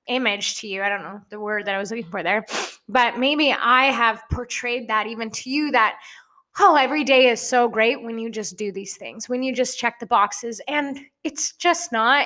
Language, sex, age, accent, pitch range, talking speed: English, female, 20-39, American, 220-265 Hz, 225 wpm